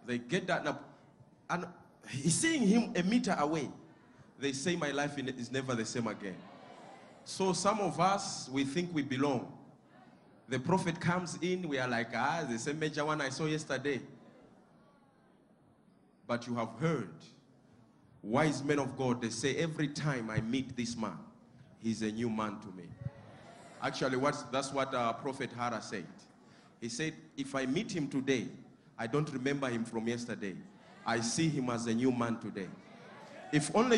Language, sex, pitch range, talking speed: English, male, 130-180 Hz, 170 wpm